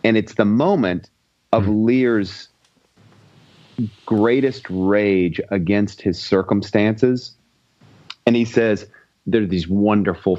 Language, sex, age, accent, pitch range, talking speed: English, male, 30-49, American, 95-115 Hz, 105 wpm